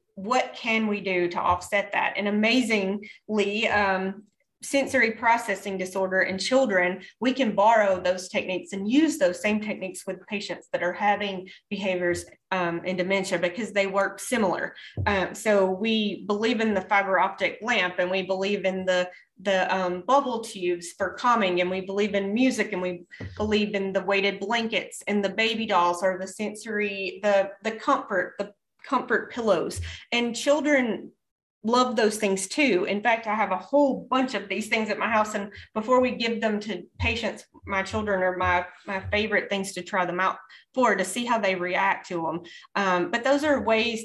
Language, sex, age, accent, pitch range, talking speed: English, female, 30-49, American, 185-225 Hz, 180 wpm